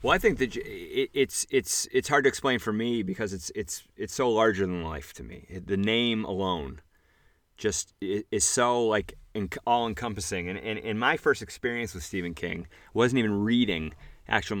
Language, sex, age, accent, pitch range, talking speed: English, male, 30-49, American, 90-110 Hz, 175 wpm